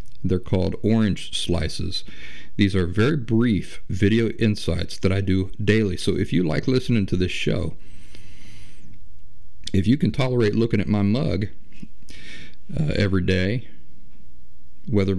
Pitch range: 90-110 Hz